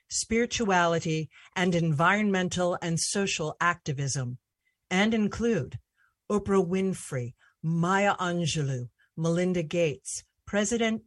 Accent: American